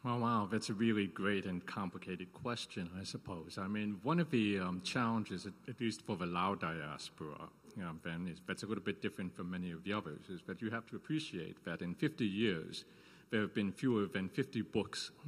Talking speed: 225 wpm